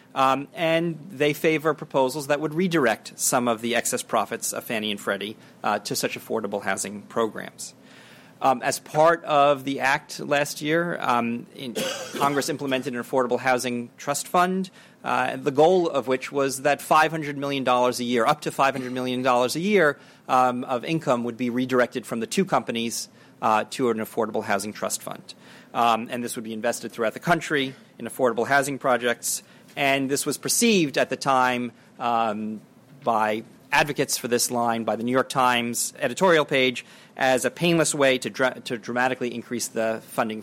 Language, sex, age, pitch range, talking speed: English, male, 40-59, 115-145 Hz, 175 wpm